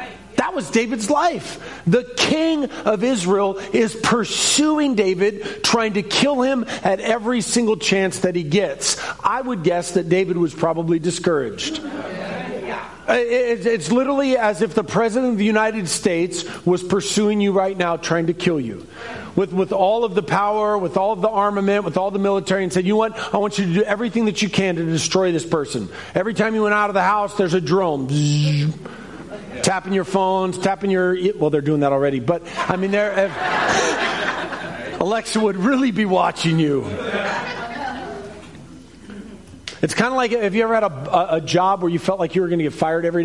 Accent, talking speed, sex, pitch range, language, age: American, 185 wpm, male, 175-215 Hz, English, 40-59